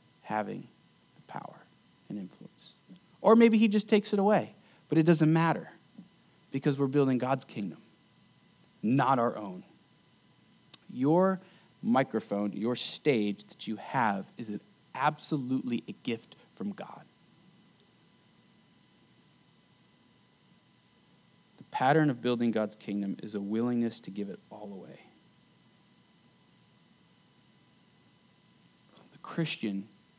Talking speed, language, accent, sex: 105 wpm, English, American, male